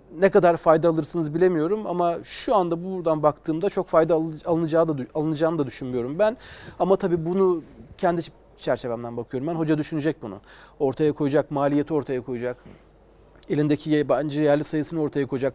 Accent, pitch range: native, 140-170 Hz